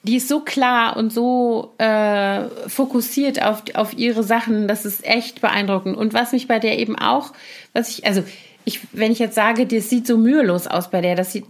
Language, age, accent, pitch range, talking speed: German, 30-49, German, 195-235 Hz, 210 wpm